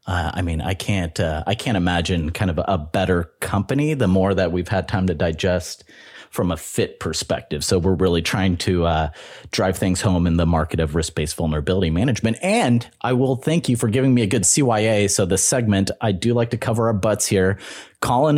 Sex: male